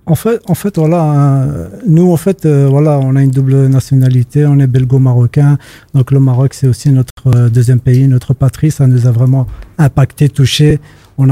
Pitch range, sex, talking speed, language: 125-145 Hz, male, 180 wpm, French